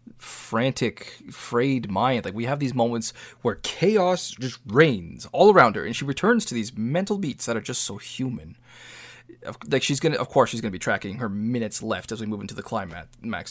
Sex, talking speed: male, 205 wpm